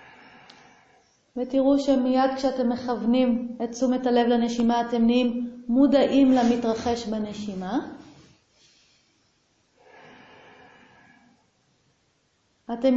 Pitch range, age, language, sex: 235-275 Hz, 30-49, Hebrew, female